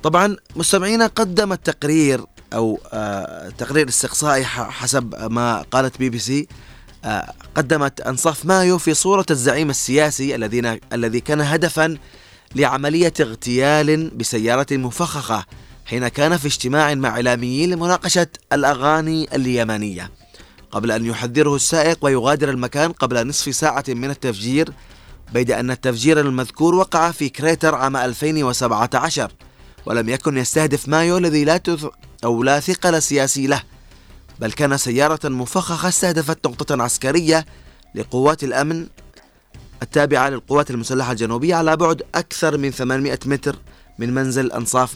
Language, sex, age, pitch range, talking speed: Arabic, male, 20-39, 120-160 Hz, 120 wpm